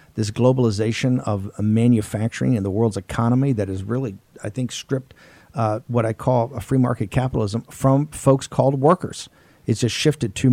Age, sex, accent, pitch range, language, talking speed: 50-69, male, American, 105-125 Hz, English, 170 wpm